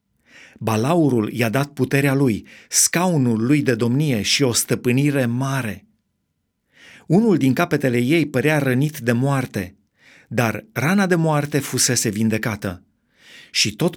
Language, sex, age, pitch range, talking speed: Romanian, male, 30-49, 120-155 Hz, 125 wpm